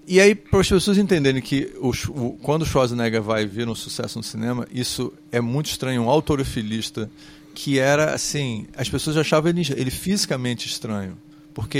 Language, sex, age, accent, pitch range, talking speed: Portuguese, male, 40-59, Brazilian, 125-155 Hz, 180 wpm